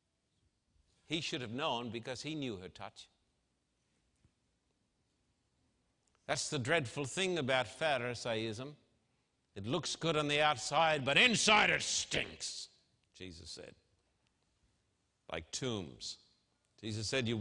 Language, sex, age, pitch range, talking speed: English, male, 60-79, 110-160 Hz, 110 wpm